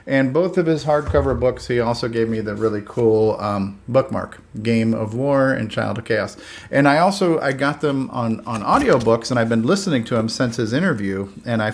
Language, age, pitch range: English, 40-59, 105-125 Hz